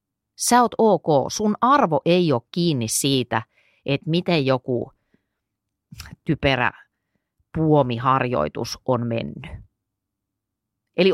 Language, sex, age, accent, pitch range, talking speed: Finnish, female, 30-49, native, 115-175 Hz, 90 wpm